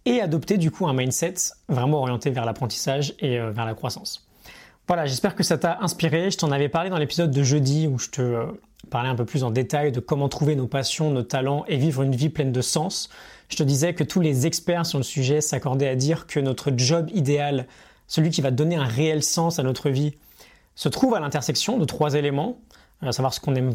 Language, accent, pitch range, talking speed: French, French, 135-165 Hz, 225 wpm